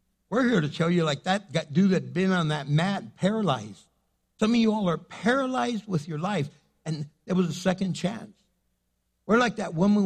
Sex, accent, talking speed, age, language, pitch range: male, American, 205 wpm, 60-79, English, 165-205 Hz